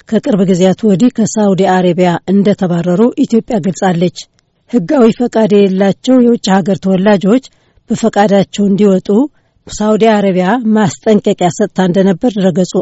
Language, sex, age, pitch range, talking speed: Amharic, female, 60-79, 190-220 Hz, 105 wpm